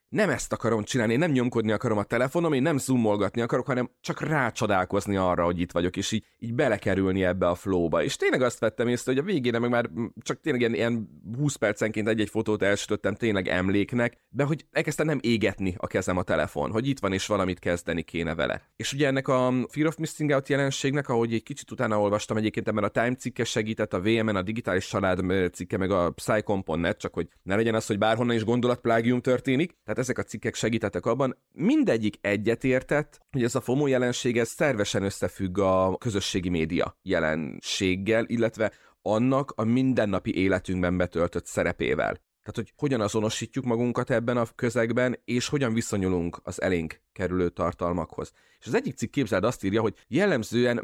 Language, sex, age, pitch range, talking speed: Hungarian, male, 30-49, 100-125 Hz, 180 wpm